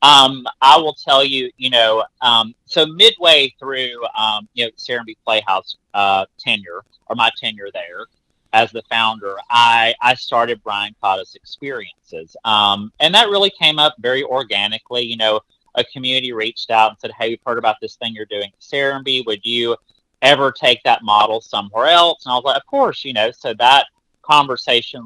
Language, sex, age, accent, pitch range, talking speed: English, male, 30-49, American, 110-150 Hz, 180 wpm